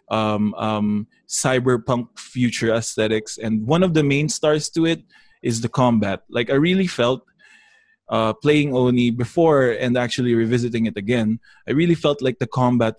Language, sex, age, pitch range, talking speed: English, male, 20-39, 110-135 Hz, 160 wpm